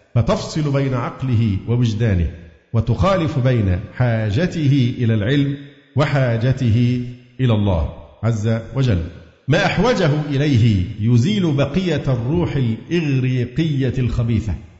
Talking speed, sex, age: 90 wpm, male, 50-69